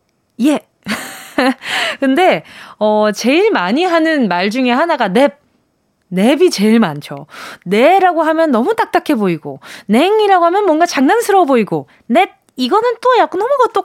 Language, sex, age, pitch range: Korean, female, 20-39, 220-345 Hz